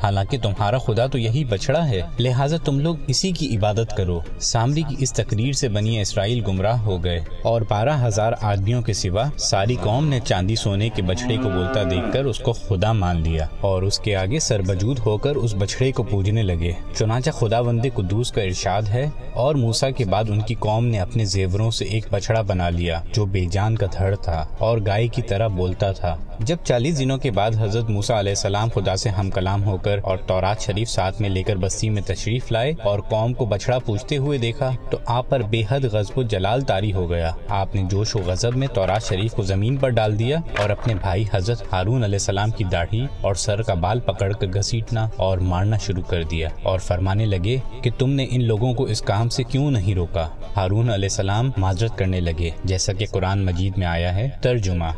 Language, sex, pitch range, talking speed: Urdu, male, 95-120 Hz, 215 wpm